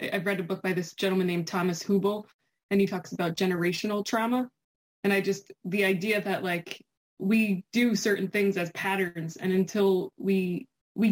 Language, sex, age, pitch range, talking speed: English, female, 20-39, 185-210 Hz, 180 wpm